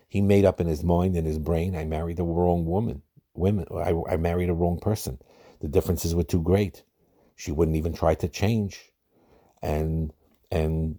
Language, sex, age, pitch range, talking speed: English, male, 50-69, 80-95 Hz, 185 wpm